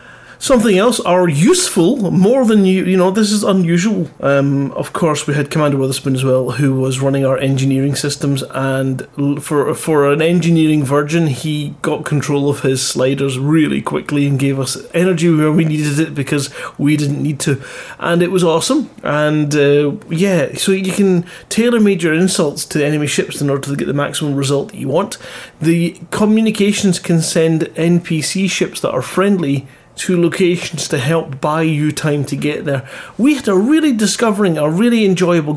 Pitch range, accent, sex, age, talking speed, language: 140-175 Hz, British, male, 30-49, 180 wpm, English